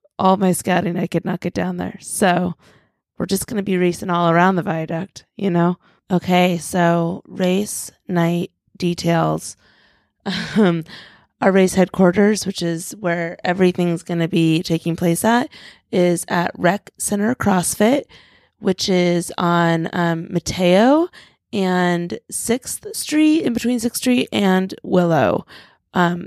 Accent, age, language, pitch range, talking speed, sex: American, 20-39, English, 170-195 Hz, 140 wpm, female